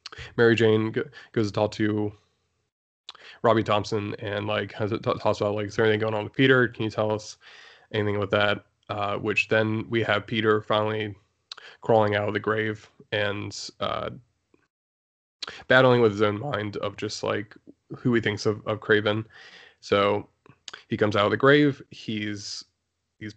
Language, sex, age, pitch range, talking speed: English, male, 20-39, 105-115 Hz, 175 wpm